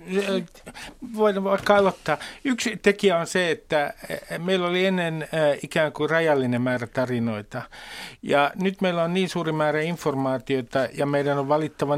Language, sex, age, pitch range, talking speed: Finnish, male, 50-69, 140-195 Hz, 140 wpm